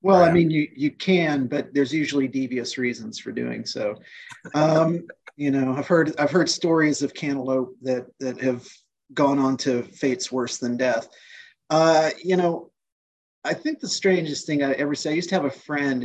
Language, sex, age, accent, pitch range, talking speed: English, male, 30-49, American, 125-155 Hz, 190 wpm